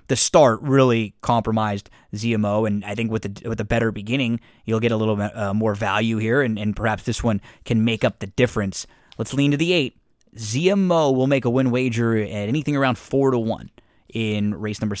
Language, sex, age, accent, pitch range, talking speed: English, male, 20-39, American, 110-145 Hz, 210 wpm